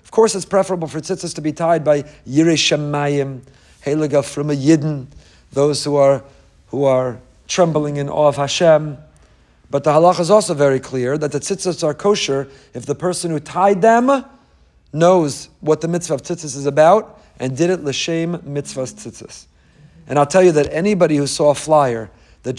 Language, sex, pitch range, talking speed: English, male, 145-180 Hz, 185 wpm